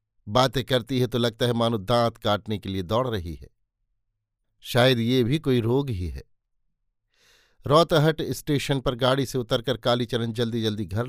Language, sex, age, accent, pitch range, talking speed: Hindi, male, 50-69, native, 105-135 Hz, 170 wpm